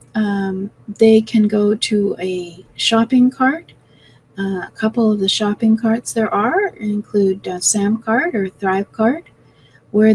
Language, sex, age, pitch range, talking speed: English, female, 30-49, 190-230 Hz, 140 wpm